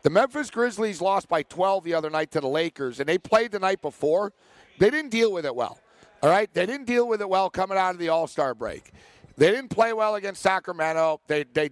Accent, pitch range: American, 160-210 Hz